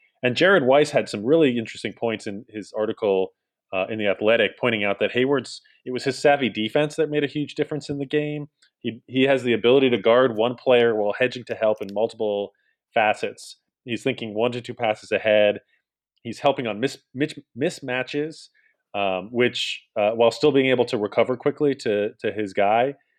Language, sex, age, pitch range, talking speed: English, male, 30-49, 105-135 Hz, 190 wpm